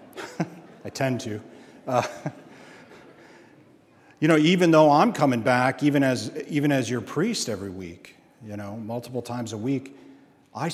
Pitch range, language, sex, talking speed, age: 120-150 Hz, English, male, 145 wpm, 40-59